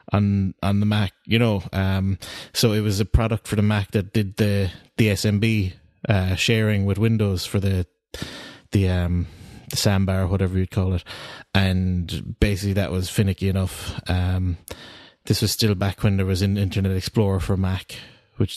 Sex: male